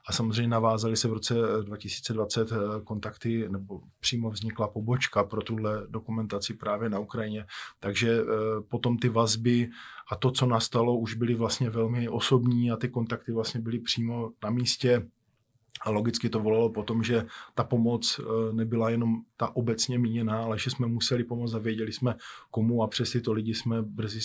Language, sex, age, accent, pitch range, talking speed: Czech, male, 20-39, native, 110-120 Hz, 165 wpm